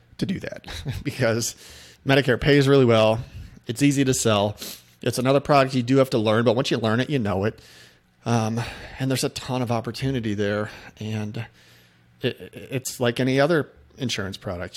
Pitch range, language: 100-125 Hz, English